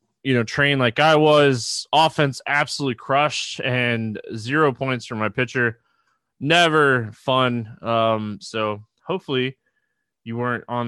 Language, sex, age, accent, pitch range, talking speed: English, male, 20-39, American, 115-150 Hz, 125 wpm